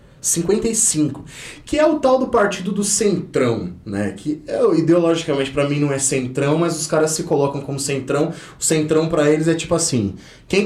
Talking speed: 180 wpm